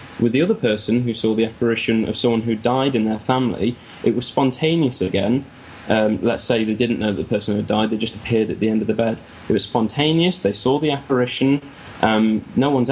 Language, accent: English, British